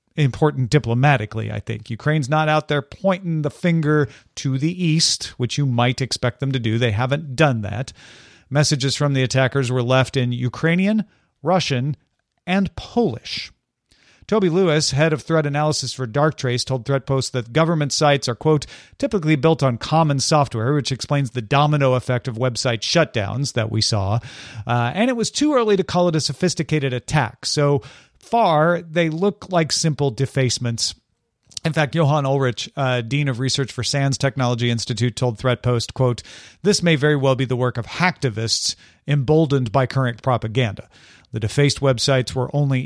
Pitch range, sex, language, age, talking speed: 125-155 Hz, male, English, 40-59, 165 wpm